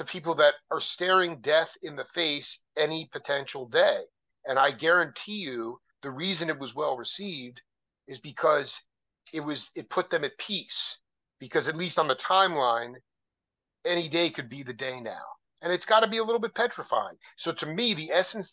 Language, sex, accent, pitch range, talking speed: English, male, American, 130-175 Hz, 190 wpm